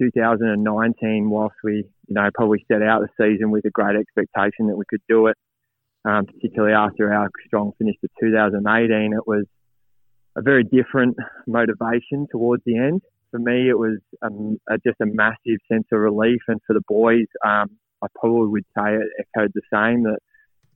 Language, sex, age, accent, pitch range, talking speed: English, male, 20-39, Australian, 105-115 Hz, 180 wpm